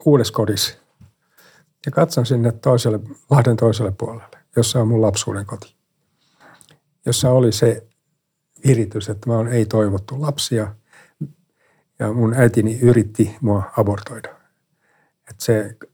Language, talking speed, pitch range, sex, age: Finnish, 115 wpm, 110-150 Hz, male, 60-79